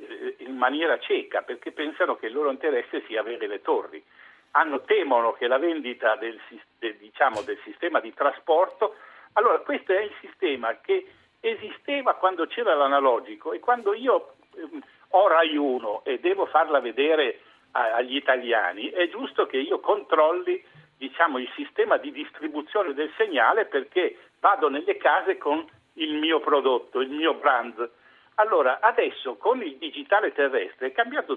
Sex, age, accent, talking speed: male, 60-79, native, 150 wpm